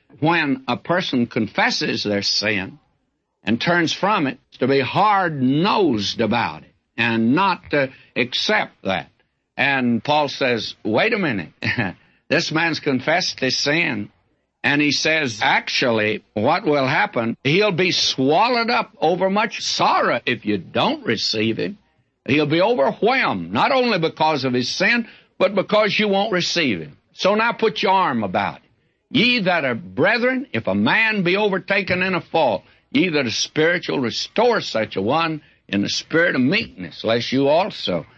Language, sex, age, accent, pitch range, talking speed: English, male, 60-79, American, 130-190 Hz, 155 wpm